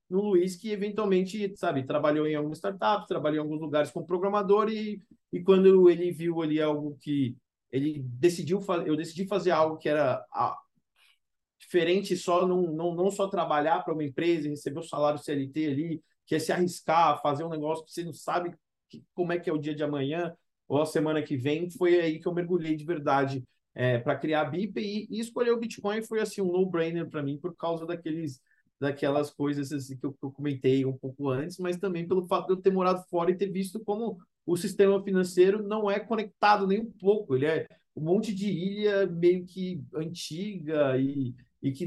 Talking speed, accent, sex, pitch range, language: 205 wpm, Brazilian, male, 150-190 Hz, Portuguese